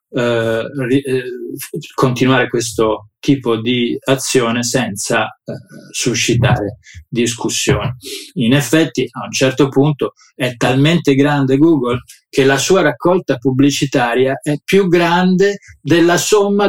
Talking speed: 110 wpm